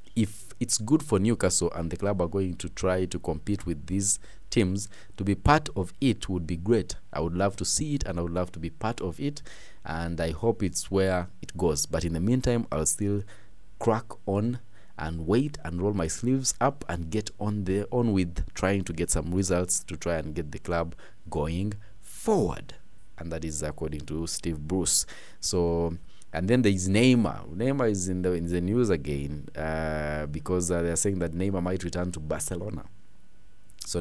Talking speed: 200 wpm